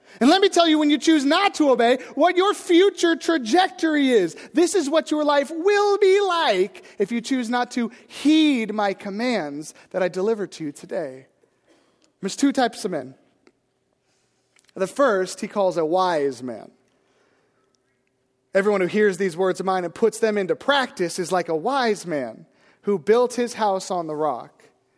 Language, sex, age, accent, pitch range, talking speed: English, male, 30-49, American, 185-260 Hz, 180 wpm